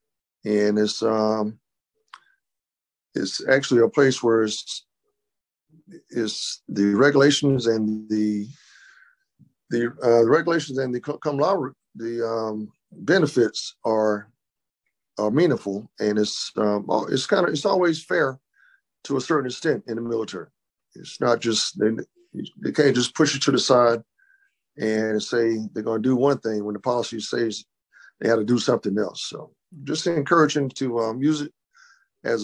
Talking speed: 150 wpm